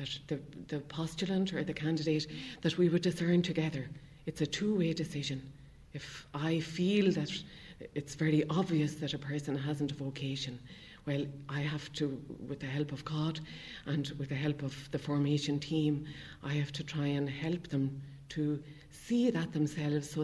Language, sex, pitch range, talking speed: English, female, 140-160 Hz, 170 wpm